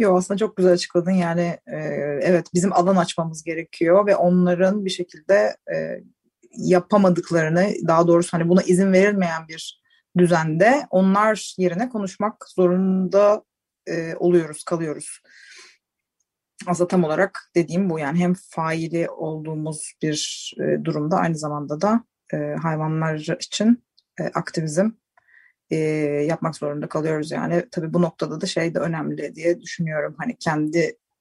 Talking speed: 130 wpm